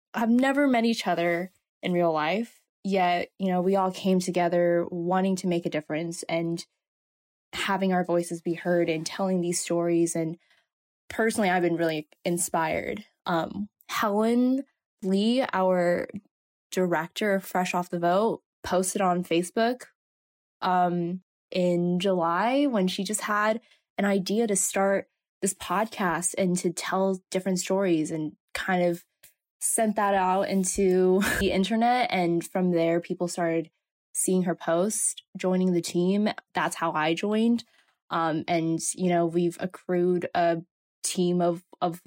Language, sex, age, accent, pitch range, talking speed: English, female, 10-29, American, 175-210 Hz, 145 wpm